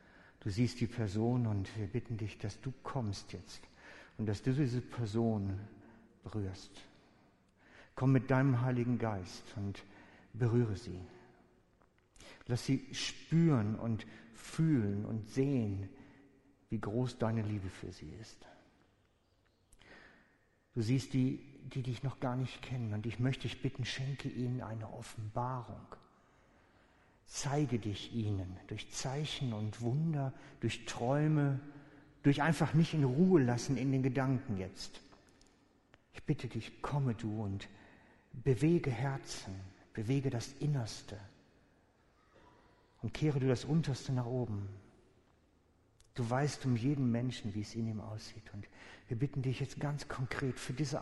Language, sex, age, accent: German, male, 60-79, German